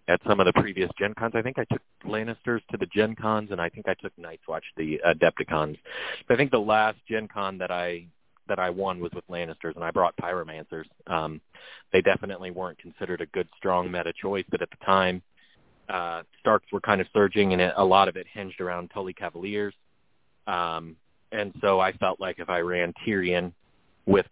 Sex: male